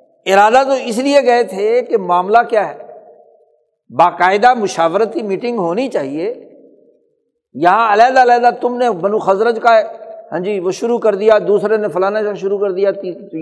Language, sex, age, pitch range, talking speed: Urdu, male, 60-79, 155-235 Hz, 165 wpm